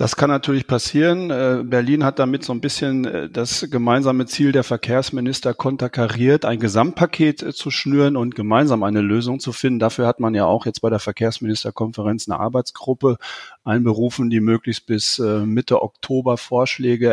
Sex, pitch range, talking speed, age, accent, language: male, 115-130 Hz, 155 wpm, 40-59, German, German